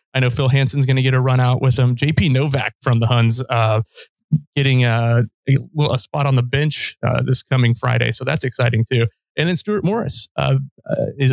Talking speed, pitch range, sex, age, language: 215 wpm, 120-145 Hz, male, 30-49, English